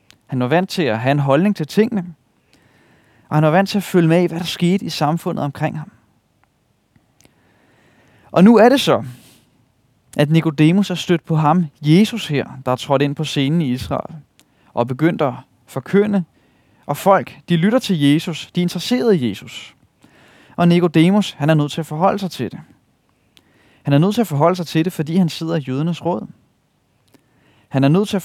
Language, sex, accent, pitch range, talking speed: Danish, male, native, 135-190 Hz, 200 wpm